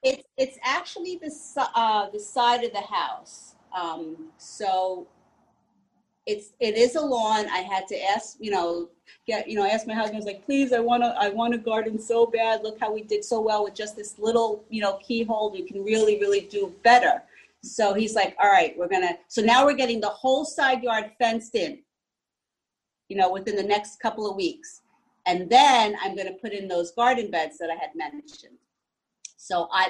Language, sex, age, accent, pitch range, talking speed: English, female, 40-59, American, 195-245 Hz, 205 wpm